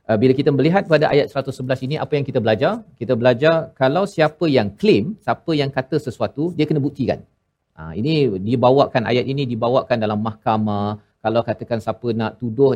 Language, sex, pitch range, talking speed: Malayalam, male, 115-140 Hz, 180 wpm